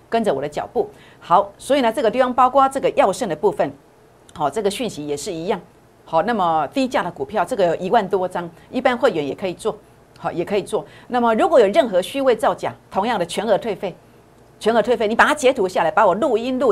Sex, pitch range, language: female, 180-260 Hz, Chinese